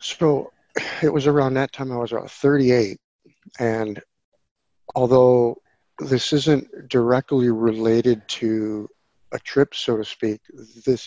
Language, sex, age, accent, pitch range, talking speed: English, male, 50-69, American, 105-125 Hz, 125 wpm